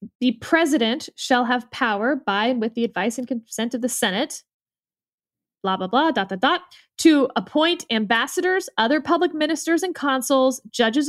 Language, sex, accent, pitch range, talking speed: English, female, American, 225-300 Hz, 160 wpm